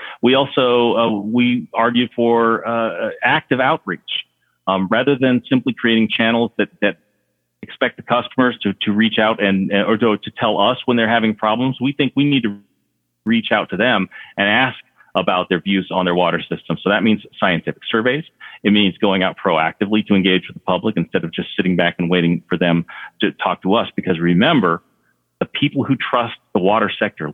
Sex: male